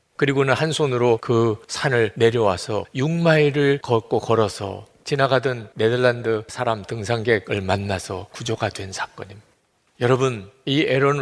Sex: male